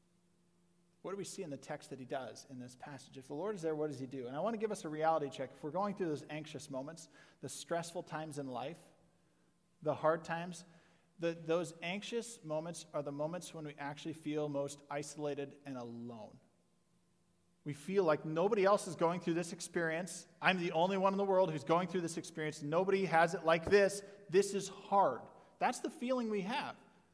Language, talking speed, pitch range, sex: English, 210 wpm, 150-175 Hz, male